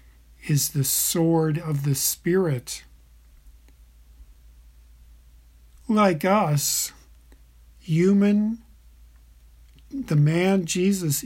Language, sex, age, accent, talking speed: English, male, 50-69, American, 65 wpm